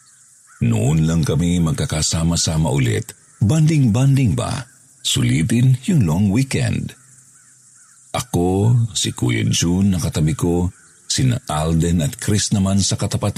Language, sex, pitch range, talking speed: Filipino, male, 85-130 Hz, 110 wpm